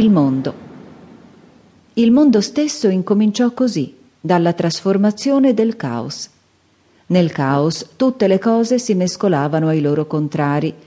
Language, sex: Italian, female